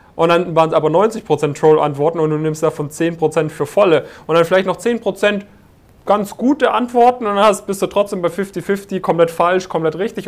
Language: German